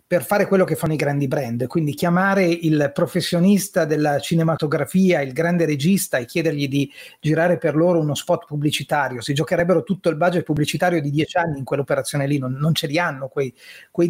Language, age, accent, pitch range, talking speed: Italian, 30-49, native, 145-190 Hz, 190 wpm